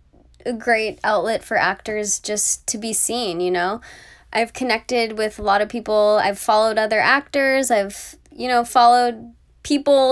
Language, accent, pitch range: English, American, 190-240 Hz